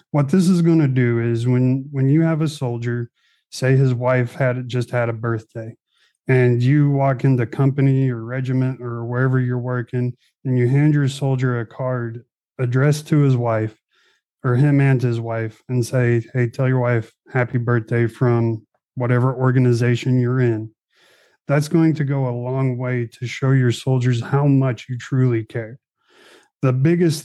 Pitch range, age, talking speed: 120-140 Hz, 30-49, 175 wpm